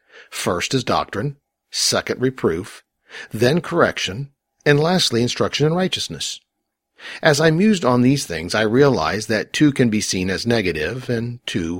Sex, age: male, 50-69